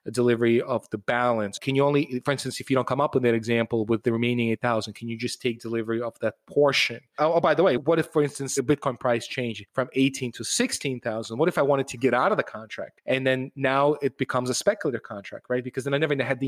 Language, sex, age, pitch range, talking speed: English, male, 30-49, 115-140 Hz, 265 wpm